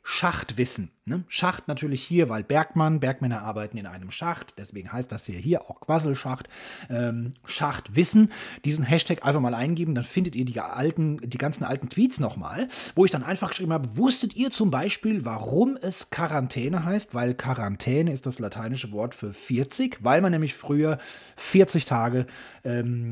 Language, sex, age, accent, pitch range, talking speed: German, male, 30-49, German, 125-185 Hz, 170 wpm